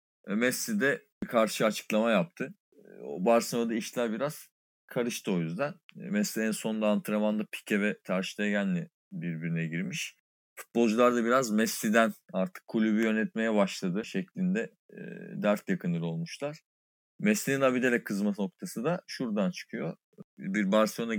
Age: 40-59